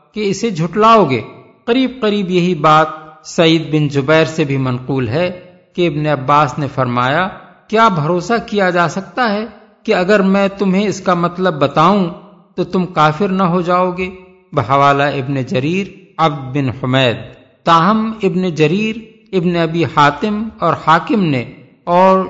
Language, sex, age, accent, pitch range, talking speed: English, male, 50-69, Indian, 145-190 Hz, 150 wpm